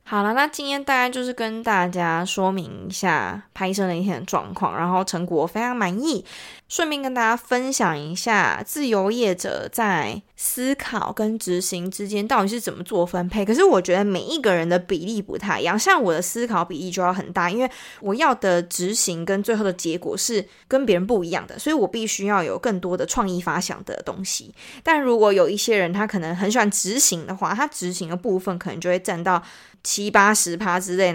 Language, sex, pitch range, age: Chinese, female, 185-240 Hz, 20-39